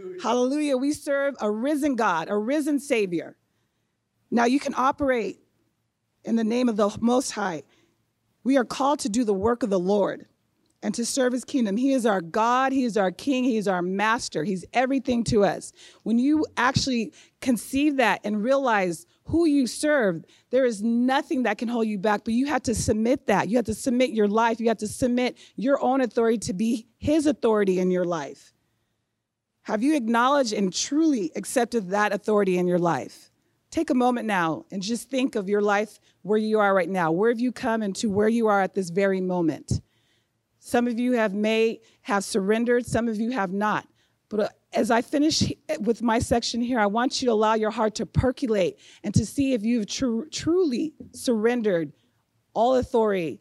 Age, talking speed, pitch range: 40-59, 195 wpm, 200-255 Hz